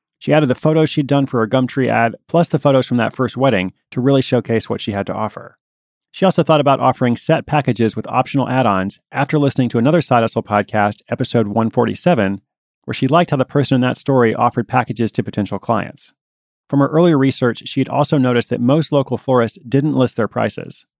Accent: American